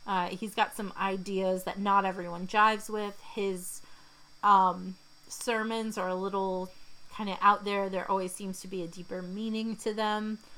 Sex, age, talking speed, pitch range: female, 30-49, 170 wpm, 180-215 Hz